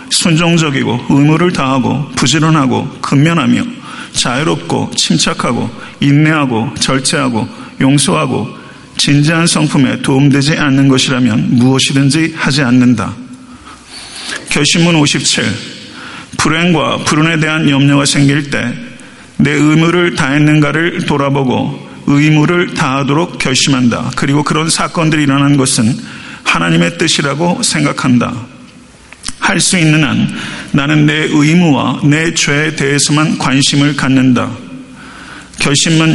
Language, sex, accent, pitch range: Korean, male, native, 135-165 Hz